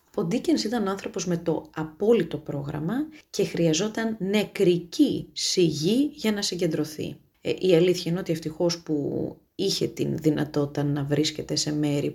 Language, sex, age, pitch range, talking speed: Greek, female, 30-49, 155-225 Hz, 140 wpm